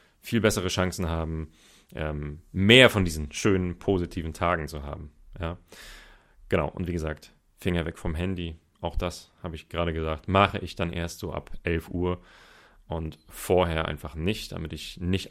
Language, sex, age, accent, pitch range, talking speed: German, male, 30-49, German, 80-100 Hz, 160 wpm